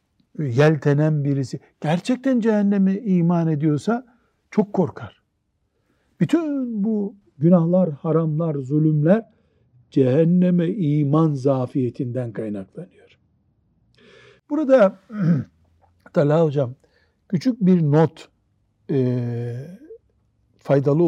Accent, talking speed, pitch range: native, 70 wpm, 140-200 Hz